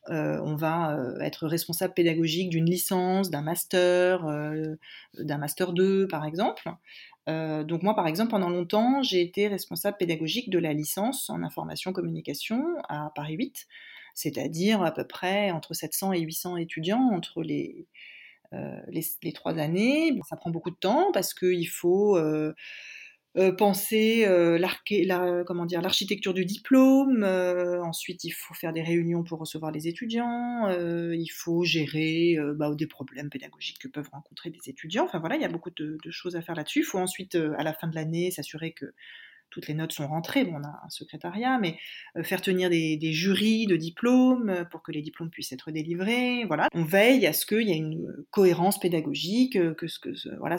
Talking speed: 185 wpm